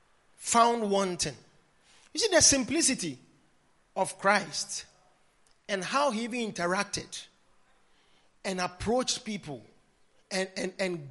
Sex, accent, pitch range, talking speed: male, Nigerian, 185-280 Hz, 105 wpm